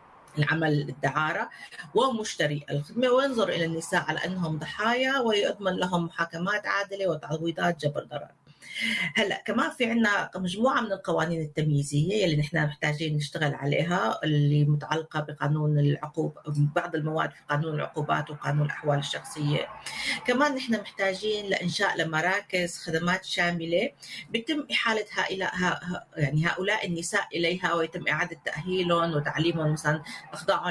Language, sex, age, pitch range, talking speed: Arabic, female, 30-49, 155-195 Hz, 120 wpm